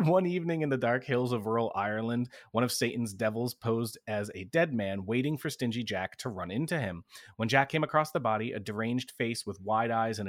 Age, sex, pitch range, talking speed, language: 30-49, male, 110-130 Hz, 225 wpm, English